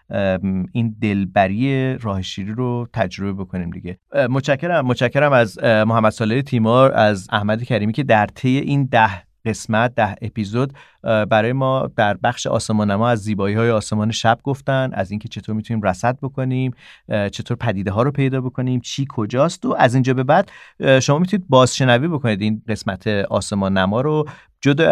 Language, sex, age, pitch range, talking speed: Persian, male, 40-59, 110-135 Hz, 150 wpm